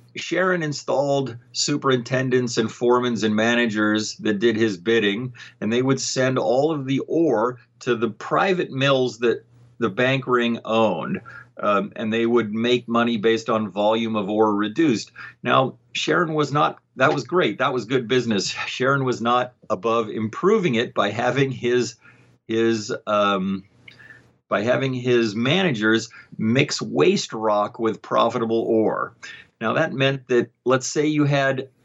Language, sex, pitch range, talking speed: English, male, 110-130 Hz, 150 wpm